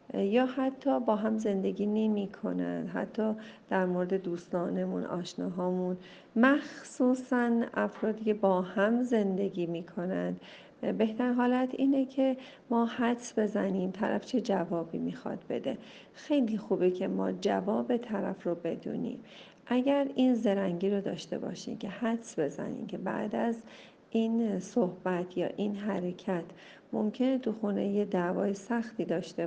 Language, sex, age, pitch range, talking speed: Persian, female, 50-69, 190-240 Hz, 130 wpm